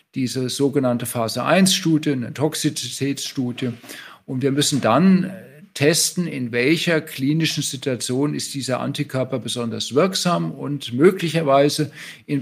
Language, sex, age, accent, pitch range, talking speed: German, male, 50-69, German, 130-155 Hz, 105 wpm